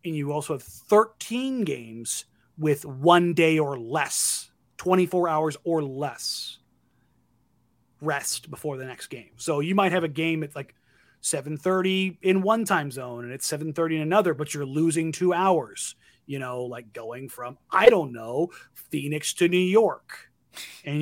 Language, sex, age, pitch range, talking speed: English, male, 30-49, 135-175 Hz, 160 wpm